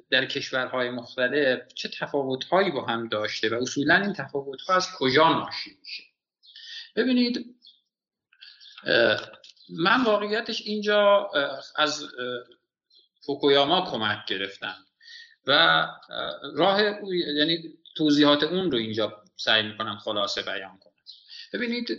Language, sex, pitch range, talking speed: Persian, male, 140-210 Hz, 100 wpm